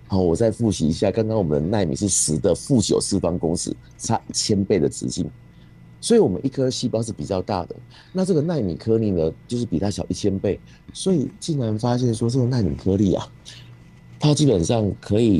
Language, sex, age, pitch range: Chinese, male, 50-69, 85-110 Hz